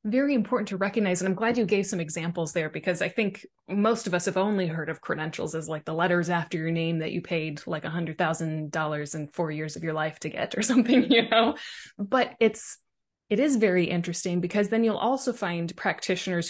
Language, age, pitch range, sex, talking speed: English, 20-39, 165-210 Hz, female, 215 wpm